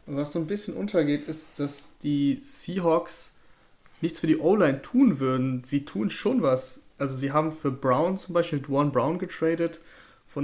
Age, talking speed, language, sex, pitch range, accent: 30-49, 170 wpm, German, male, 135-155 Hz, German